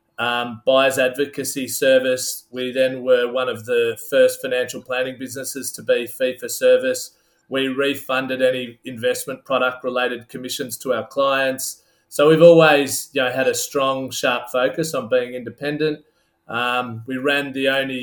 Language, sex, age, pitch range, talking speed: English, male, 30-49, 130-160 Hz, 145 wpm